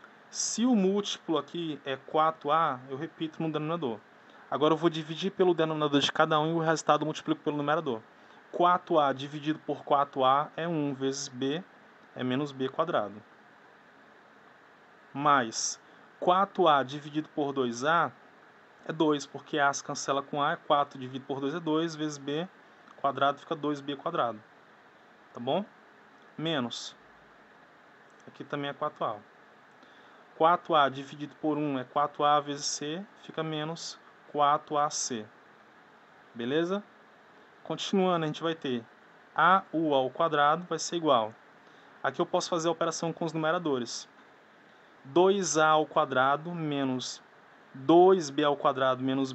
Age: 20-39